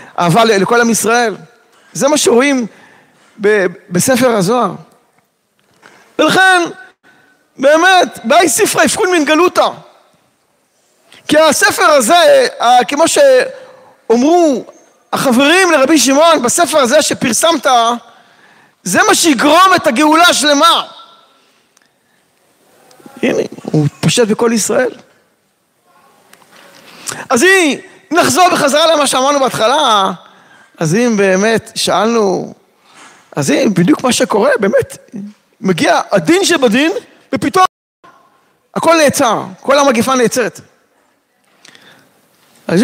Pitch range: 225-330 Hz